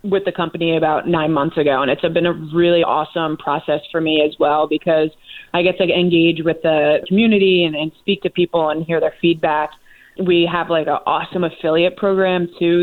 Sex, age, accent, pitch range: female, 20-39, American, 160-185 Hz